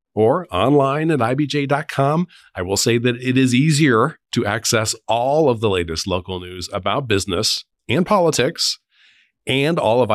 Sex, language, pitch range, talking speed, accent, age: male, English, 95-135 Hz, 155 wpm, American, 40-59